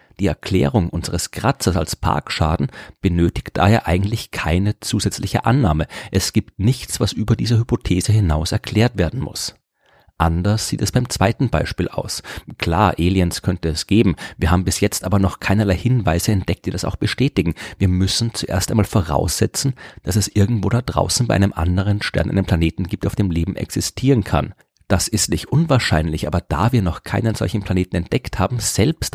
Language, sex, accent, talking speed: German, male, German, 175 wpm